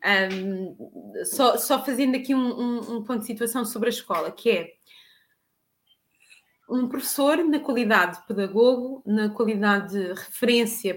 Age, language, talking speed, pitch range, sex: 20-39, Portuguese, 135 wpm, 210-260 Hz, female